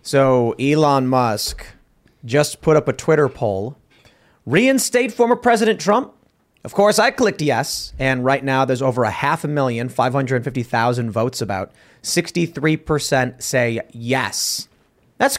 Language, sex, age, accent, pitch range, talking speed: English, male, 30-49, American, 130-165 Hz, 135 wpm